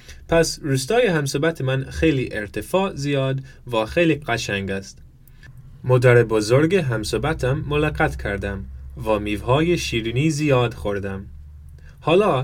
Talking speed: 105 wpm